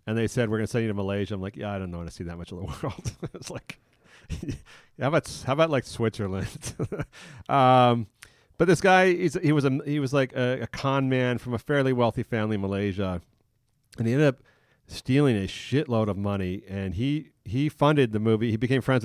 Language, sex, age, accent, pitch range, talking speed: English, male, 40-59, American, 100-125 Hz, 220 wpm